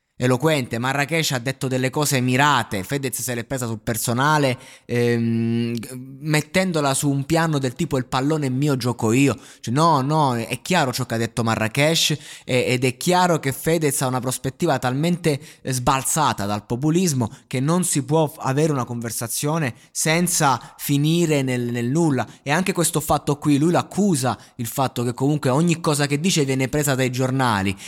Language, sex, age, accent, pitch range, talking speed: Italian, male, 20-39, native, 125-155 Hz, 170 wpm